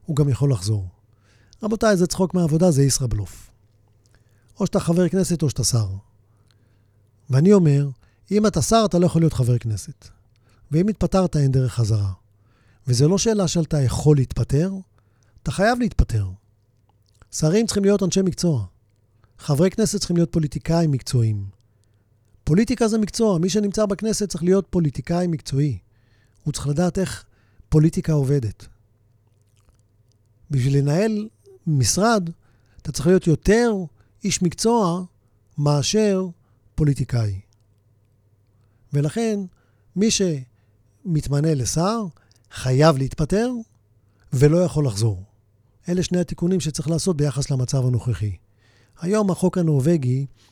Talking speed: 120 wpm